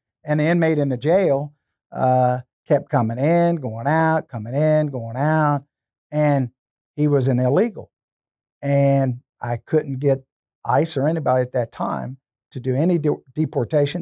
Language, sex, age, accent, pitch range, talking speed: English, male, 50-69, American, 130-155 Hz, 155 wpm